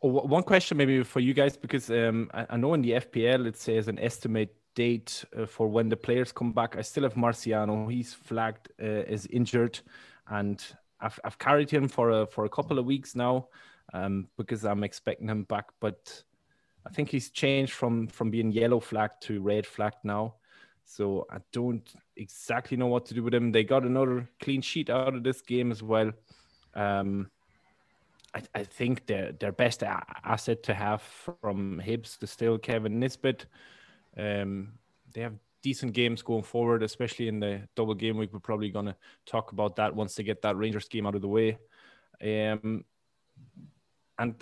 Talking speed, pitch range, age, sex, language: 185 wpm, 110-125 Hz, 20-39, male, English